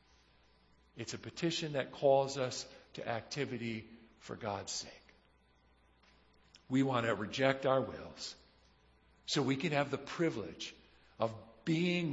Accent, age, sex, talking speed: American, 50-69, male, 125 wpm